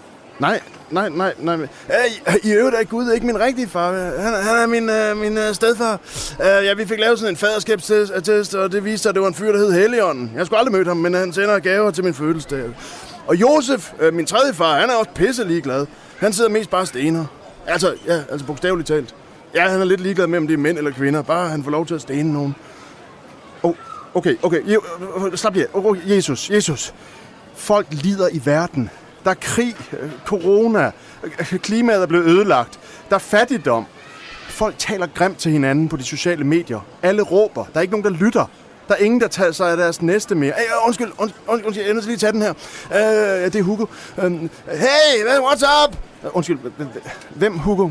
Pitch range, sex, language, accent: 170-215 Hz, male, Danish, native